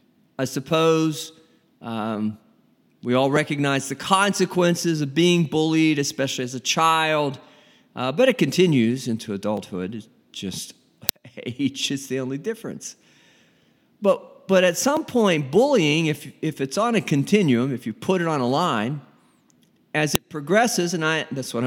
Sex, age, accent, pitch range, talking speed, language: male, 50-69, American, 130-175 Hz, 150 wpm, English